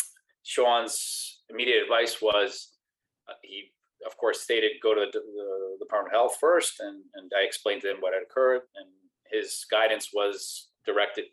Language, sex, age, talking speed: English, male, 30-49, 165 wpm